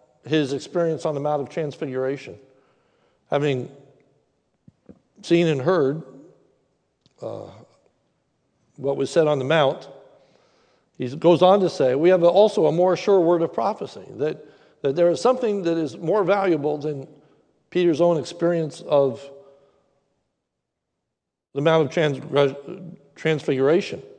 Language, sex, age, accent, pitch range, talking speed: English, male, 60-79, American, 140-170 Hz, 125 wpm